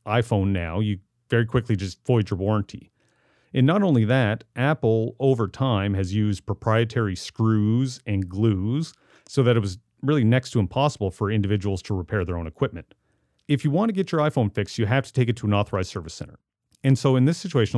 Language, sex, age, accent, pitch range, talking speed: English, male, 40-59, American, 105-130 Hz, 205 wpm